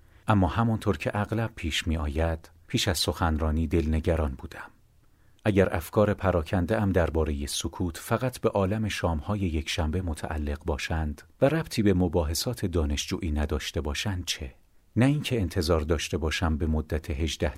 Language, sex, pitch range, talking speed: Persian, male, 80-105 Hz, 140 wpm